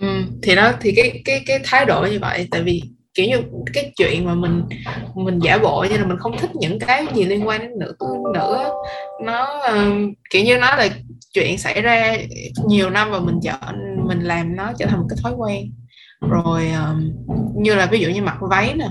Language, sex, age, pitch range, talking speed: Vietnamese, female, 20-39, 145-210 Hz, 220 wpm